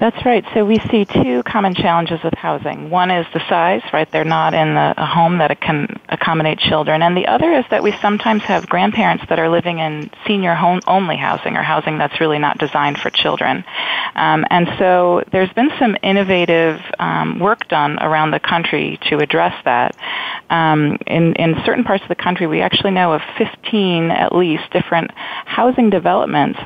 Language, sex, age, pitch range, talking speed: English, female, 30-49, 160-190 Hz, 185 wpm